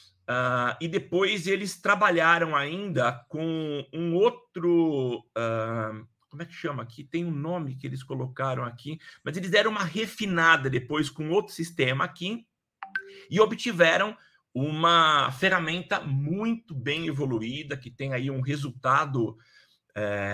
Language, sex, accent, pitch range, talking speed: Portuguese, male, Brazilian, 130-175 Hz, 125 wpm